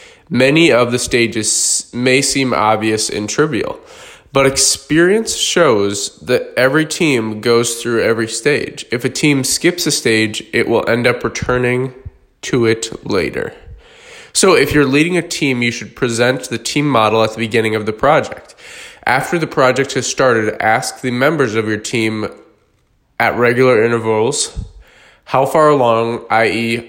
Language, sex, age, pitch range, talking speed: English, male, 20-39, 115-135 Hz, 155 wpm